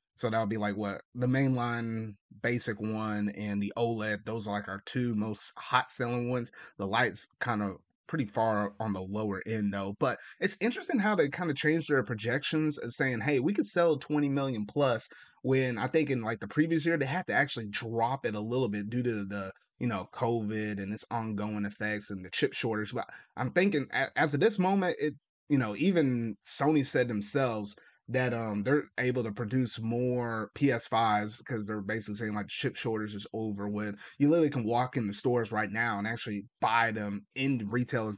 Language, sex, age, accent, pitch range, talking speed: English, male, 30-49, American, 105-130 Hz, 205 wpm